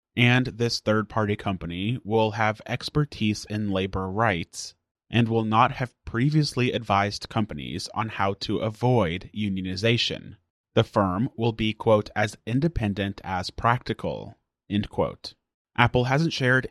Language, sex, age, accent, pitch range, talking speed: English, male, 30-49, American, 100-120 Hz, 130 wpm